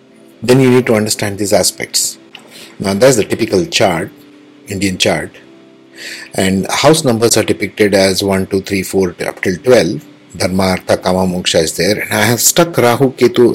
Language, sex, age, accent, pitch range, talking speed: English, male, 50-69, Indian, 95-125 Hz, 175 wpm